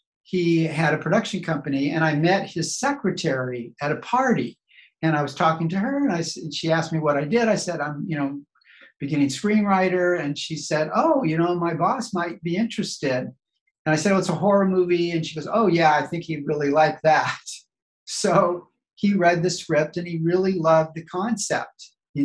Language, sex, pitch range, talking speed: English, male, 145-180 Hz, 210 wpm